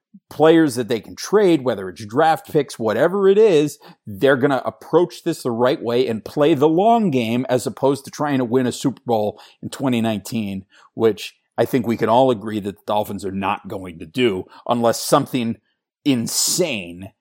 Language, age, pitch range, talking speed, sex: English, 40-59, 115-150 Hz, 190 wpm, male